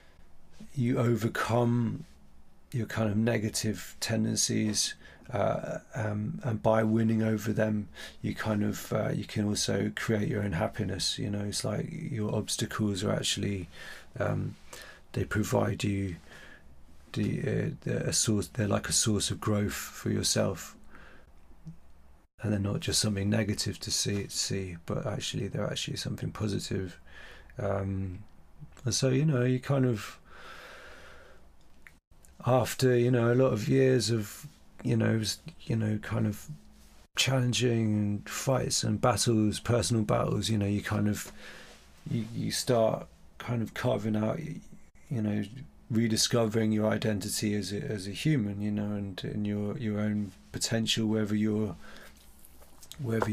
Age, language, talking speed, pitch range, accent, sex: 30-49, English, 140 wpm, 100-120 Hz, British, male